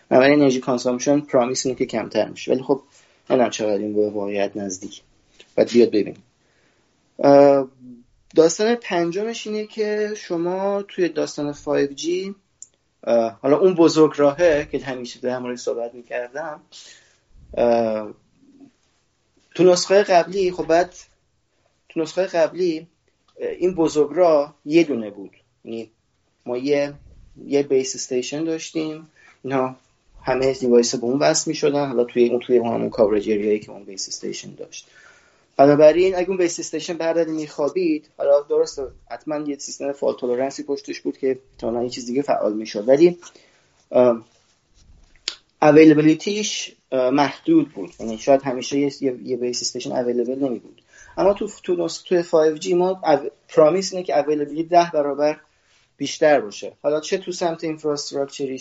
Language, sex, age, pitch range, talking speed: Persian, male, 30-49, 125-175 Hz, 130 wpm